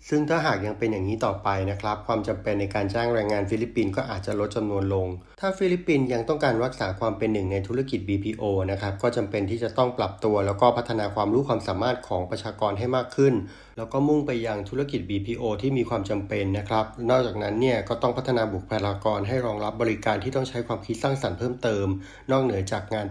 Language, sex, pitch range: Thai, male, 100-120 Hz